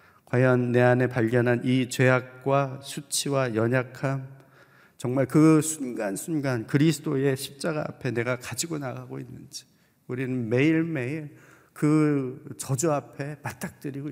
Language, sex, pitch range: Korean, male, 120-150 Hz